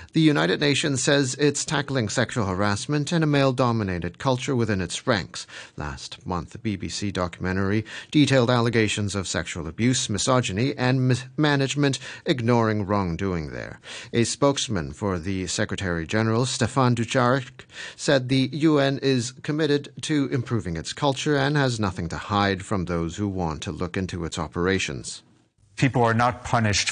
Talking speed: 145 wpm